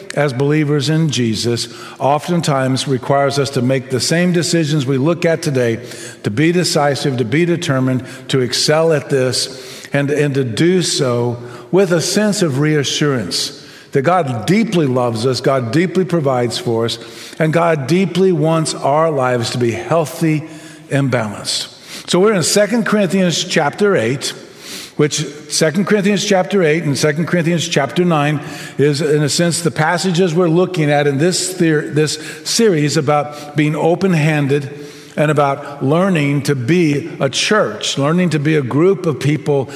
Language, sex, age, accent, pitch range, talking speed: English, male, 50-69, American, 135-170 Hz, 160 wpm